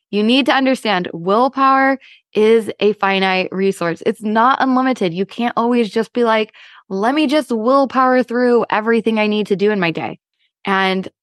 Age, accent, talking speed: 20-39, American, 170 wpm